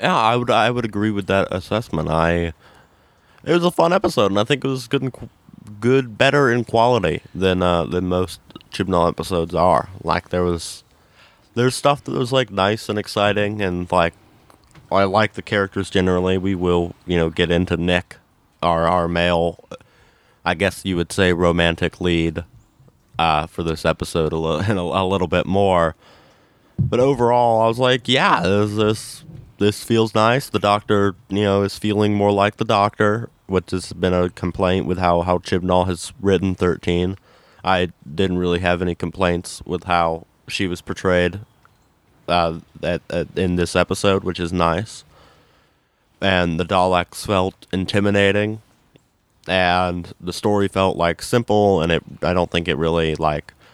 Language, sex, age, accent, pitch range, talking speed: English, male, 20-39, American, 85-105 Hz, 165 wpm